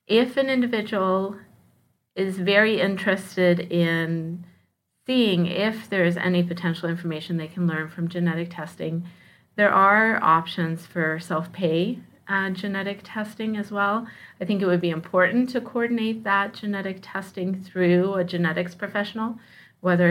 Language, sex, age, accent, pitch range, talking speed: English, female, 30-49, American, 170-200 Hz, 135 wpm